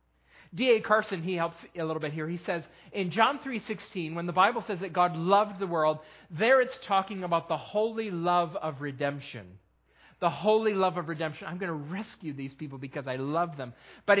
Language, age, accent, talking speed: English, 40-59, American, 200 wpm